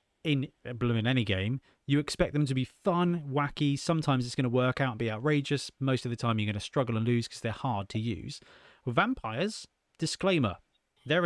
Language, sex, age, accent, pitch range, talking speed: English, male, 30-49, British, 115-160 Hz, 215 wpm